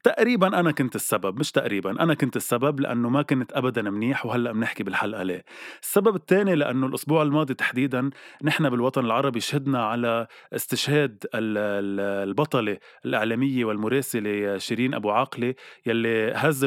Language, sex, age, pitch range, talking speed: Arabic, male, 20-39, 115-140 Hz, 135 wpm